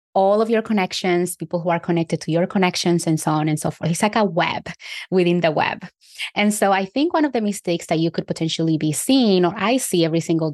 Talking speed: 245 wpm